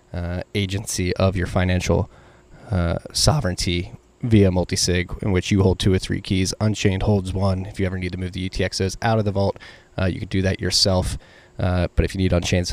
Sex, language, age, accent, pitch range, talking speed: male, English, 20-39, American, 95-110 Hz, 210 wpm